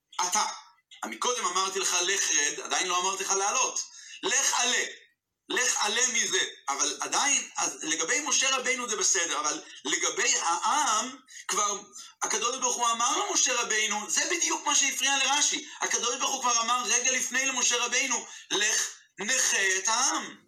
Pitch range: 215-265 Hz